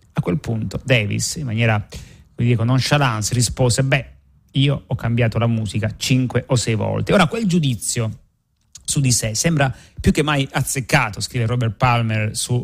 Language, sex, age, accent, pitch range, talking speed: Italian, male, 30-49, native, 110-130 Hz, 160 wpm